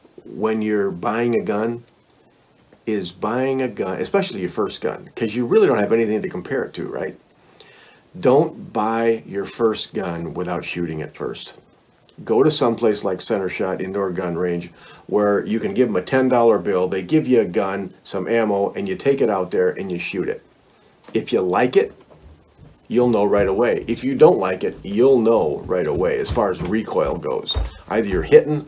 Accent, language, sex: American, English, male